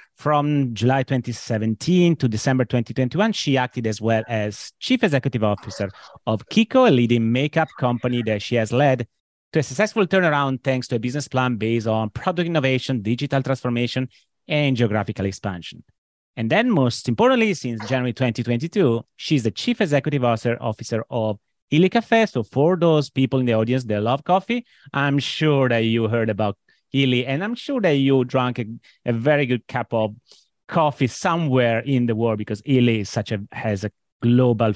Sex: male